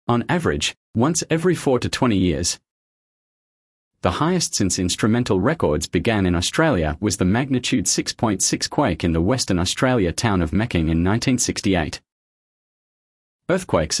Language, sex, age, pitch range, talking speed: English, male, 40-59, 90-130 Hz, 135 wpm